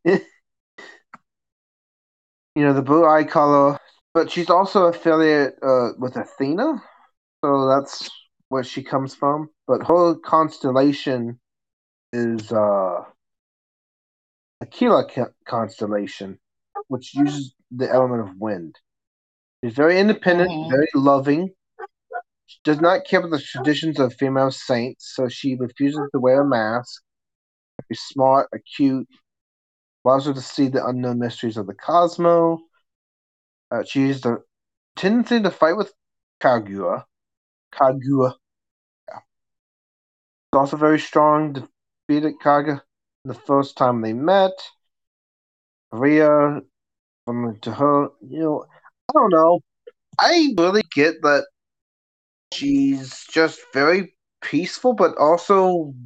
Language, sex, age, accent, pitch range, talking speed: English, male, 30-49, American, 125-165 Hz, 115 wpm